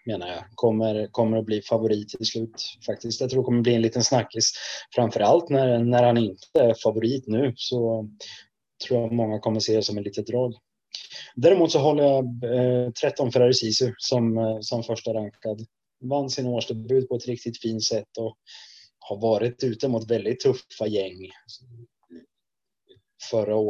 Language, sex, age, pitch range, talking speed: Swedish, male, 20-39, 110-130 Hz, 165 wpm